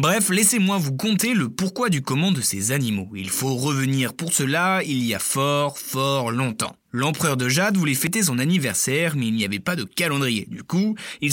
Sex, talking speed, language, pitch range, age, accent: male, 205 wpm, French, 125-175 Hz, 20-39, French